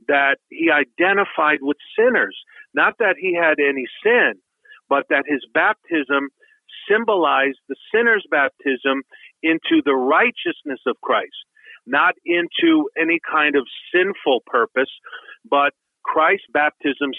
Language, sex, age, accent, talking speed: English, male, 50-69, American, 120 wpm